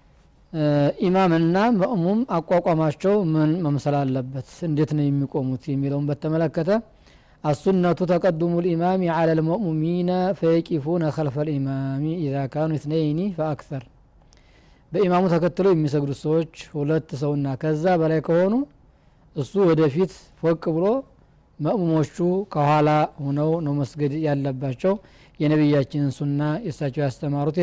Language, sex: Amharic, male